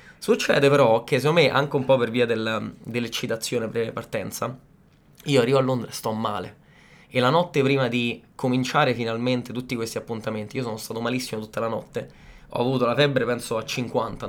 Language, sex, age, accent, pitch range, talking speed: Italian, male, 20-39, native, 115-140 Hz, 190 wpm